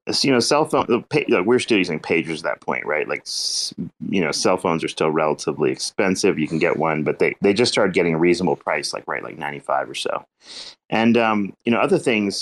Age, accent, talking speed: 30-49, American, 220 wpm